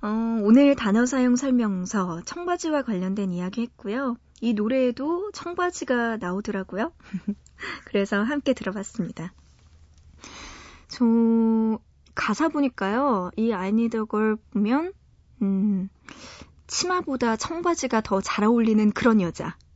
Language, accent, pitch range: Korean, native, 200-260 Hz